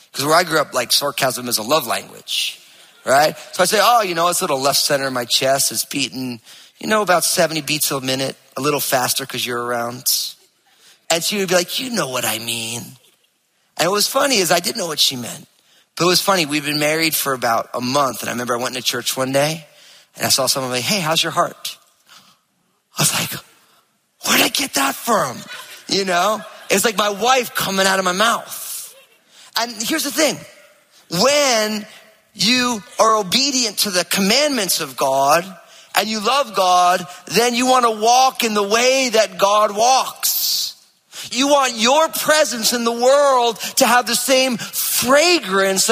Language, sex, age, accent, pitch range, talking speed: English, male, 30-49, American, 170-260 Hz, 195 wpm